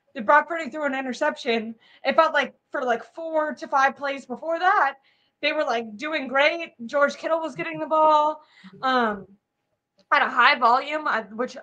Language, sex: English, female